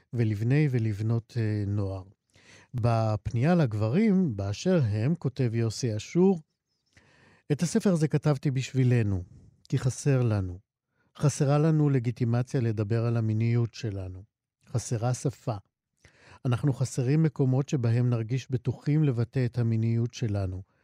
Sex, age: male, 50-69